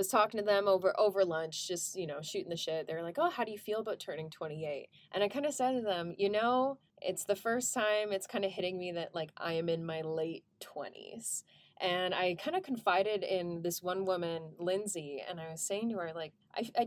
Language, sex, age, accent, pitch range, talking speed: English, female, 20-39, American, 175-235 Hz, 240 wpm